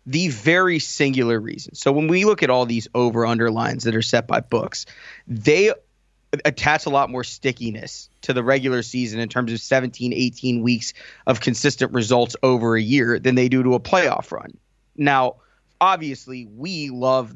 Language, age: English, 30-49